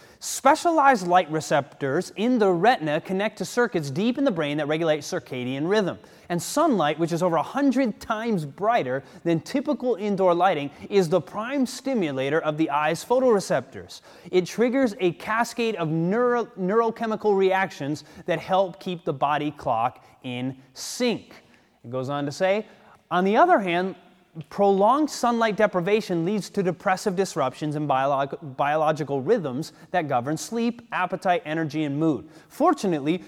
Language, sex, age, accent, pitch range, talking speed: English, male, 30-49, American, 160-215 Hz, 145 wpm